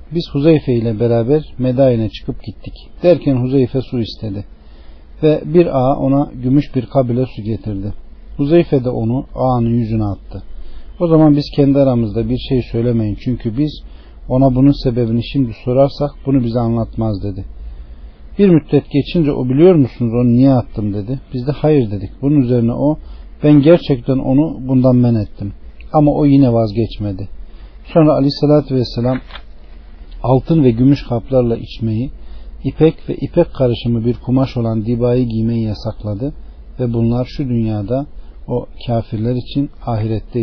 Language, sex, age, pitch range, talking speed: Turkish, male, 40-59, 110-140 Hz, 145 wpm